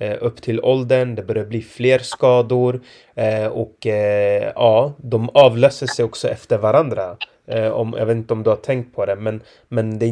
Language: Swedish